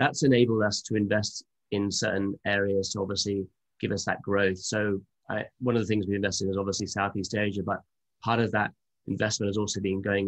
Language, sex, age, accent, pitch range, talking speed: English, male, 20-39, British, 95-110 Hz, 205 wpm